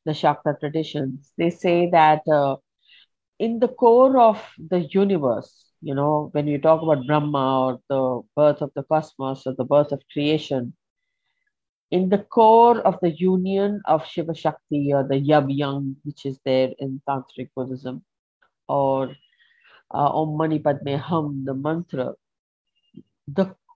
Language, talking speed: Hindi, 145 wpm